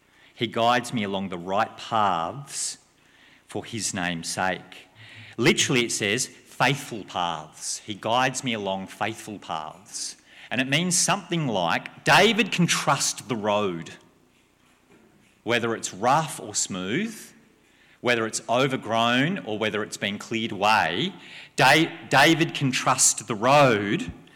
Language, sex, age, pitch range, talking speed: English, male, 40-59, 120-180 Hz, 125 wpm